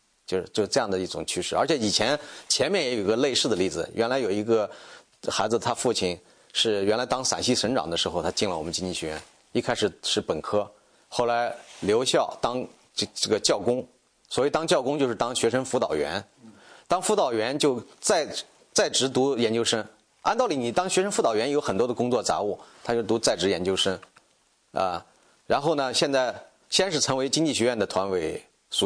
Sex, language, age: male, English, 30-49